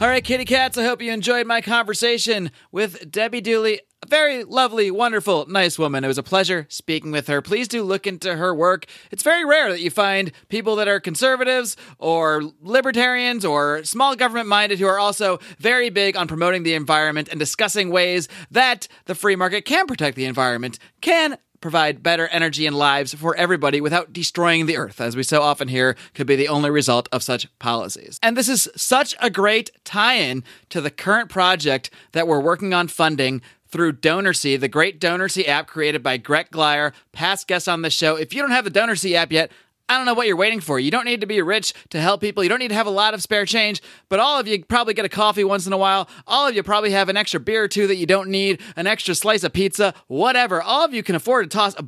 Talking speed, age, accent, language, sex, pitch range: 230 wpm, 30-49, American, English, male, 155-220 Hz